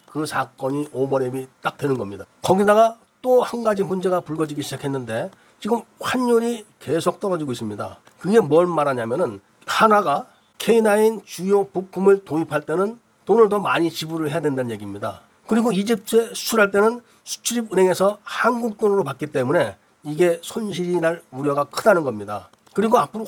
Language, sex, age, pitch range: Korean, male, 40-59, 145-205 Hz